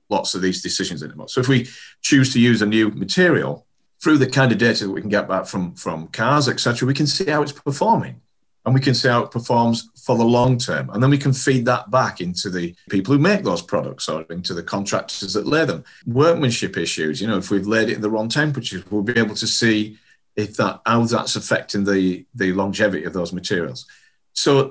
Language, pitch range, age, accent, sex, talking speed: English, 100-130 Hz, 40-59, British, male, 230 wpm